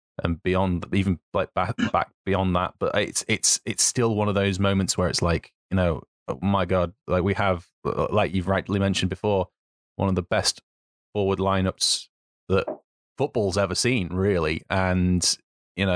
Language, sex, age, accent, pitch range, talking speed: English, male, 20-39, British, 90-105 Hz, 175 wpm